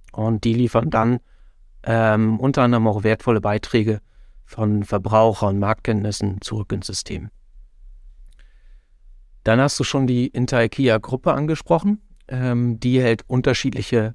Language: German